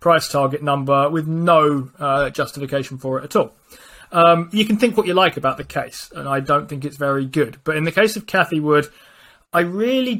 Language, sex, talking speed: English, male, 220 wpm